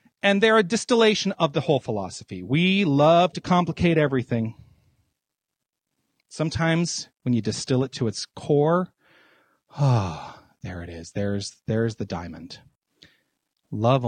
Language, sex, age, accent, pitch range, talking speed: English, male, 40-59, American, 115-165 Hz, 130 wpm